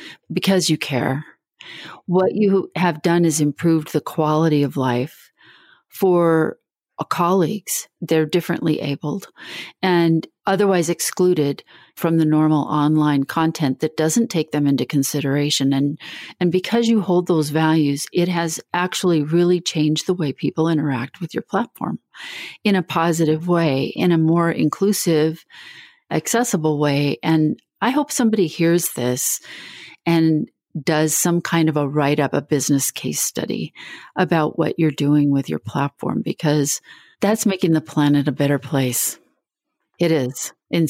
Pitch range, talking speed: 150-180 Hz, 145 wpm